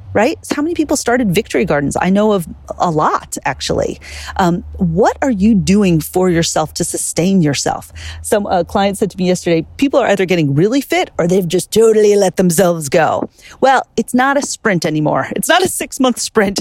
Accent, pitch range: American, 155-220 Hz